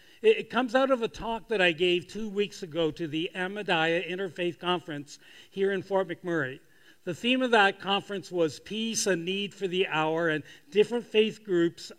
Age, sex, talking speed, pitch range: 50-69, male, 185 wpm, 160-195 Hz